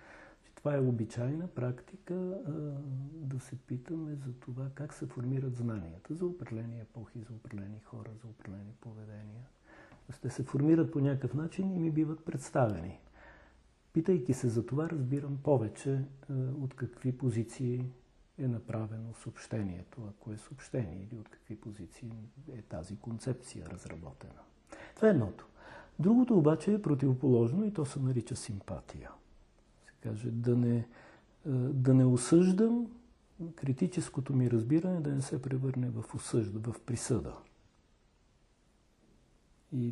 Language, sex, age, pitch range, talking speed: Bulgarian, male, 50-69, 115-150 Hz, 130 wpm